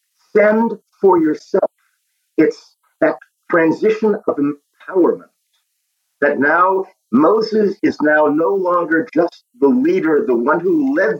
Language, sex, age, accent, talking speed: English, male, 50-69, American, 120 wpm